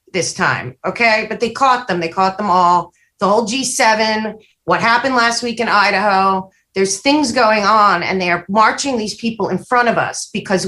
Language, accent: English, American